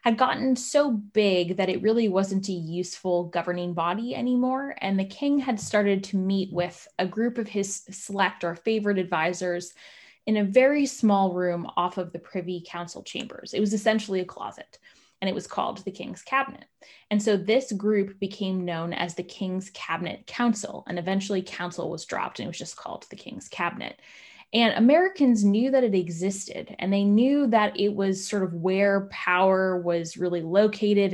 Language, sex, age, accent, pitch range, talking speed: English, female, 10-29, American, 180-225 Hz, 185 wpm